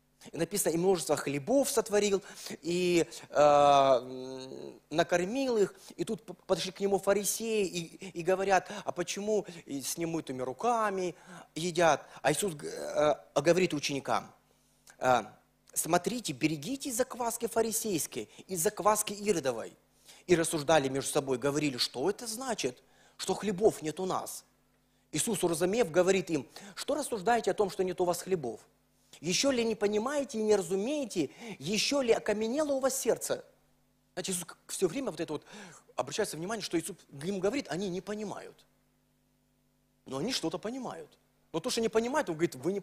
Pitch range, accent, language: 170-225 Hz, native, Russian